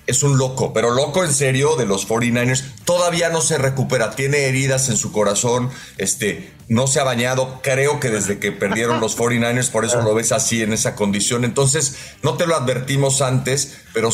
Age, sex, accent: 40-59, male, Mexican